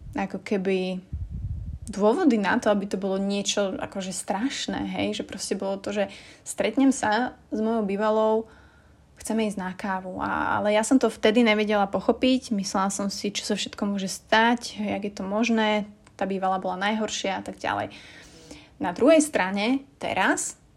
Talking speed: 170 wpm